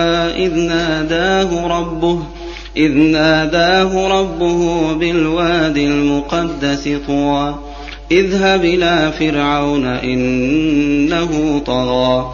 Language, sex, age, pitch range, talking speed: Arabic, male, 30-49, 145-170 Hz, 70 wpm